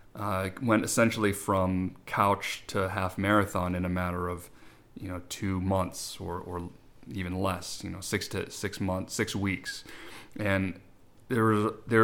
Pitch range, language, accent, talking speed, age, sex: 95-110 Hz, English, American, 150 wpm, 30-49, male